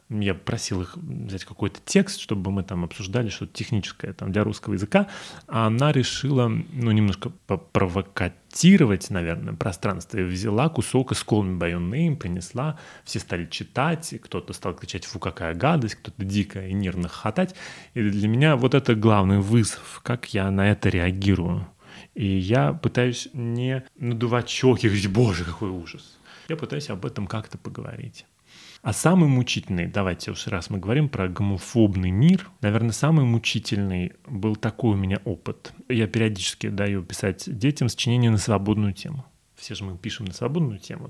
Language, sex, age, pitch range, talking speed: Russian, male, 30-49, 100-135 Hz, 160 wpm